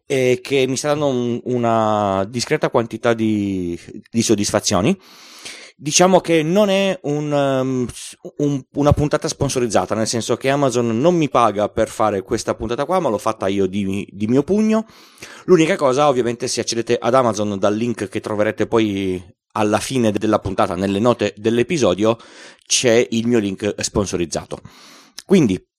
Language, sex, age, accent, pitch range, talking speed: Italian, male, 30-49, native, 105-135 Hz, 155 wpm